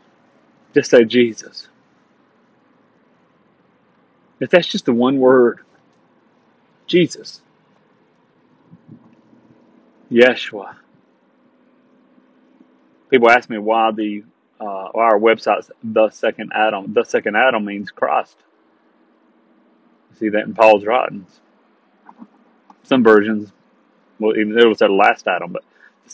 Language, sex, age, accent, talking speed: English, male, 30-49, American, 100 wpm